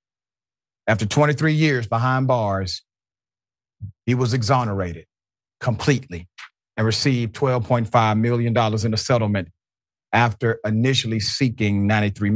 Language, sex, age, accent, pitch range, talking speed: English, male, 50-69, American, 100-135 Hz, 95 wpm